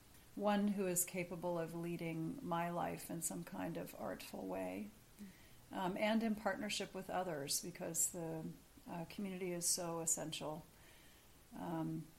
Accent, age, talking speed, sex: American, 40-59, 140 wpm, female